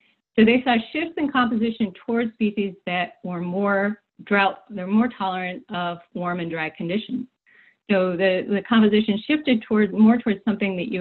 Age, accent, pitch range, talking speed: 30-49, American, 175-235 Hz, 165 wpm